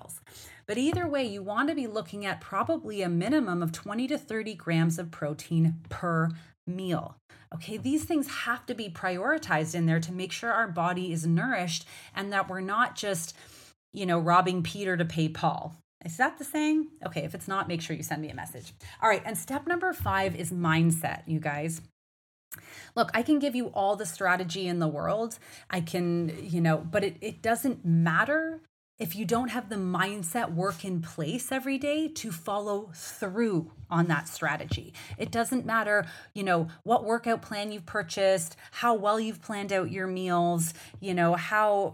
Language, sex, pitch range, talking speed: English, female, 170-225 Hz, 185 wpm